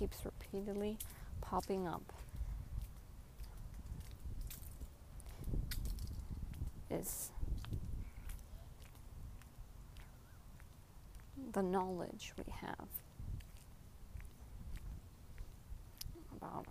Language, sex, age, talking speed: English, female, 20-39, 35 wpm